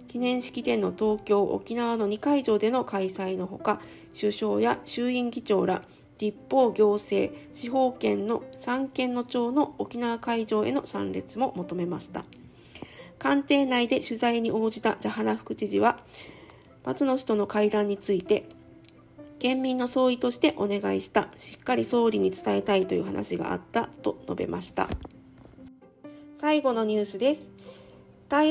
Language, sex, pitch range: Japanese, female, 200-255 Hz